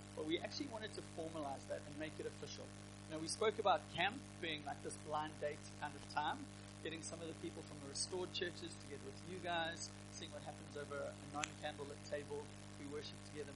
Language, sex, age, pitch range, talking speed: English, male, 30-49, 100-150 Hz, 215 wpm